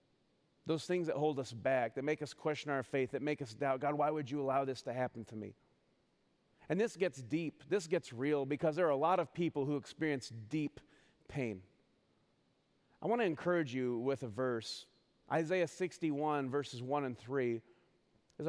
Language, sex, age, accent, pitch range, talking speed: English, male, 40-59, American, 140-205 Hz, 190 wpm